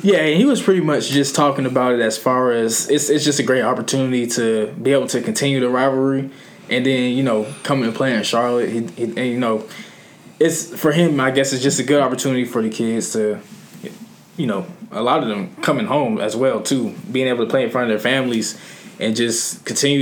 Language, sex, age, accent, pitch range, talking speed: English, male, 20-39, American, 120-160 Hz, 230 wpm